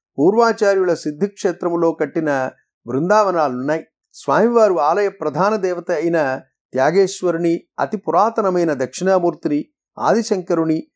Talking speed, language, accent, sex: 75 wpm, Telugu, native, male